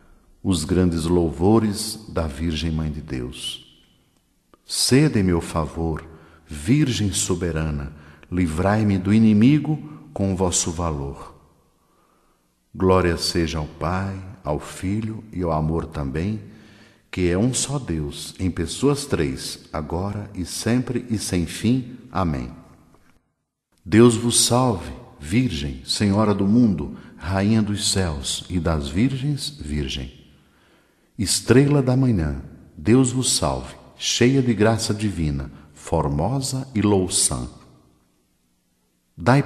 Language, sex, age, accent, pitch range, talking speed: Portuguese, male, 60-79, Brazilian, 75-110 Hz, 110 wpm